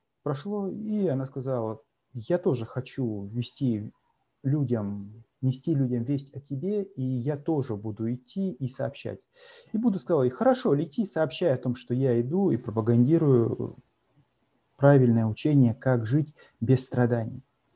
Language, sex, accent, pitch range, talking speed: Russian, male, native, 125-165 Hz, 135 wpm